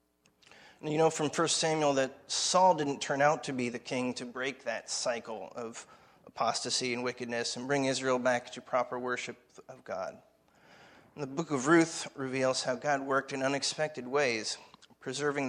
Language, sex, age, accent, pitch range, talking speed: English, male, 30-49, American, 125-145 Hz, 165 wpm